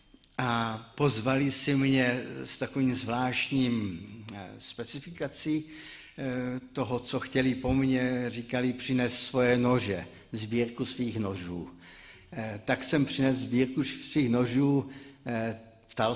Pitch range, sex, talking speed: 115-135 Hz, male, 100 wpm